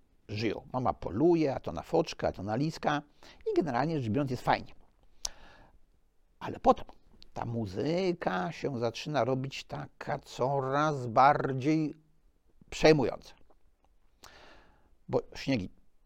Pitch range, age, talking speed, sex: 115-175 Hz, 50-69, 110 wpm, male